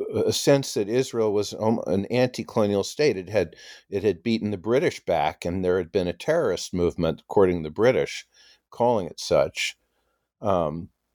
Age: 50-69